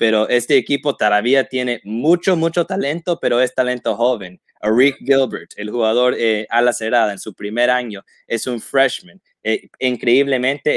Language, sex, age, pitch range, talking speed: Spanish, male, 20-39, 115-130 Hz, 160 wpm